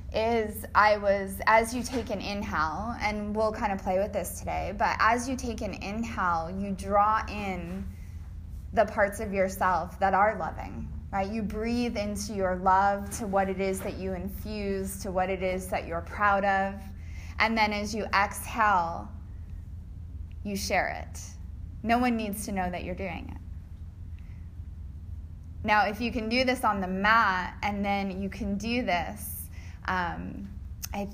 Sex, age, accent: female, 10-29, American